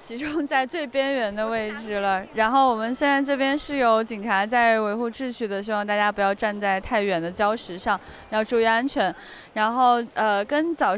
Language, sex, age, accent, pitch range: Chinese, female, 20-39, native, 215-275 Hz